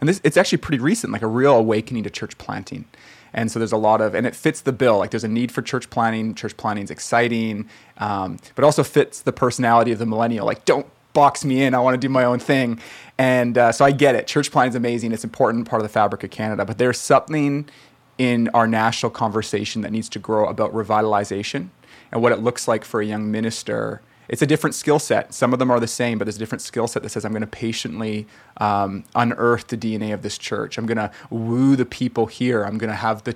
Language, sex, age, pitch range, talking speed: English, male, 30-49, 110-130 Hz, 250 wpm